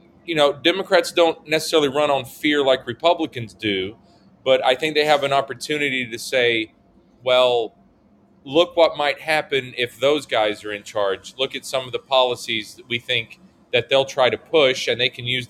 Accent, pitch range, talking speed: American, 110-140 Hz, 190 wpm